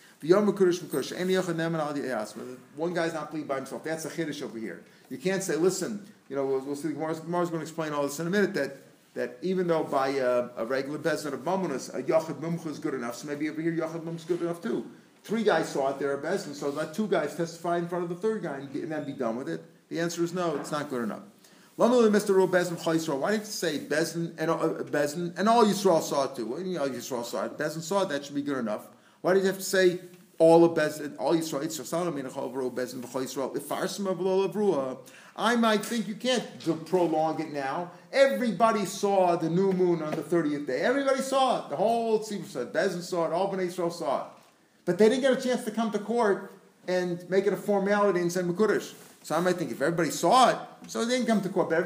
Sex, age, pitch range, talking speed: male, 50-69, 155-195 Hz, 225 wpm